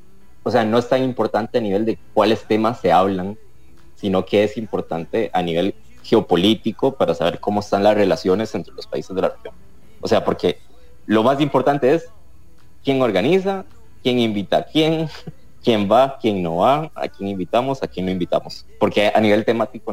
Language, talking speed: English, 185 wpm